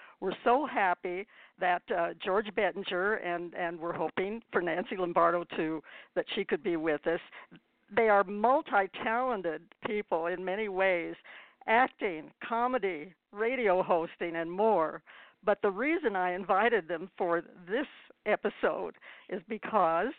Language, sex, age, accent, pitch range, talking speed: English, female, 60-79, American, 170-220 Hz, 135 wpm